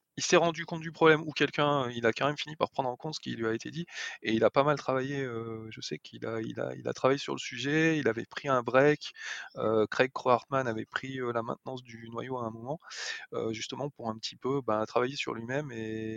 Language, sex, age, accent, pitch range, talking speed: French, male, 20-39, French, 115-140 Hz, 250 wpm